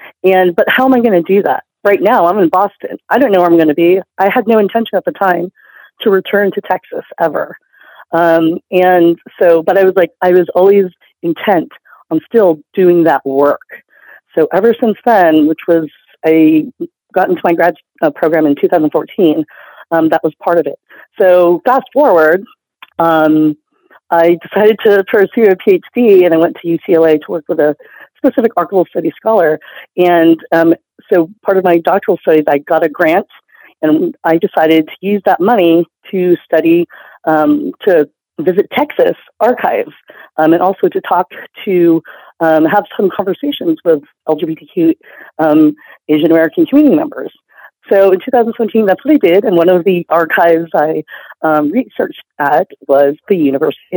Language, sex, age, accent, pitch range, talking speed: English, female, 40-59, American, 165-220 Hz, 175 wpm